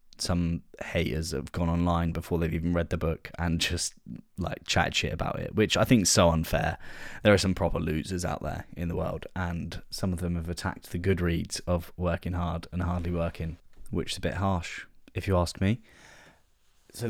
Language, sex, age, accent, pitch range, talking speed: English, male, 10-29, British, 85-90 Hz, 205 wpm